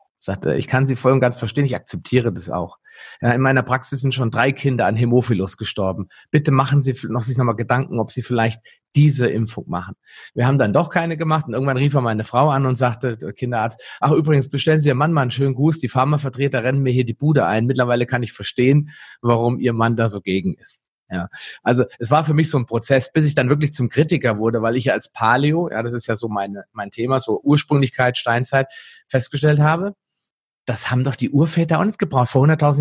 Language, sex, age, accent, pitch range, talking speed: German, male, 30-49, German, 120-155 Hz, 230 wpm